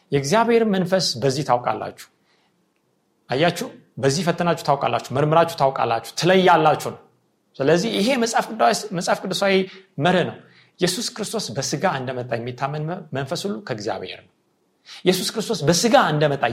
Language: Amharic